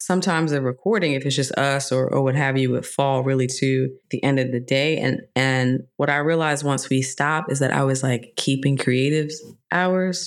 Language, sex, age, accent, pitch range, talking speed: English, female, 20-39, American, 130-150 Hz, 215 wpm